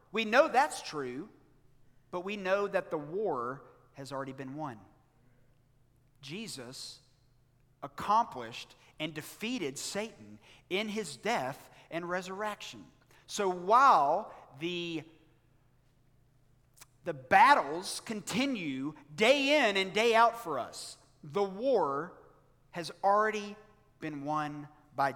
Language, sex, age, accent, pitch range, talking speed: English, male, 50-69, American, 130-195 Hz, 105 wpm